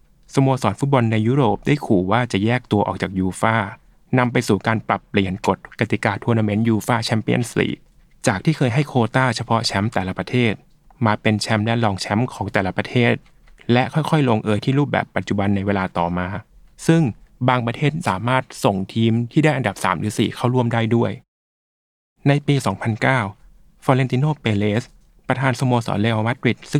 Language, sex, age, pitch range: Thai, male, 20-39, 105-130 Hz